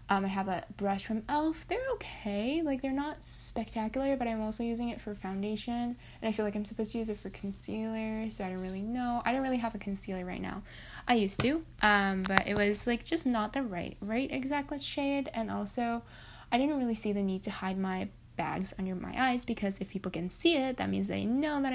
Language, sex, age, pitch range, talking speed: English, female, 10-29, 190-240 Hz, 235 wpm